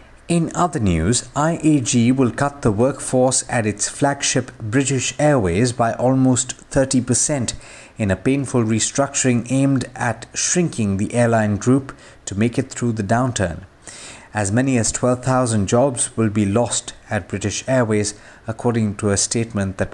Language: English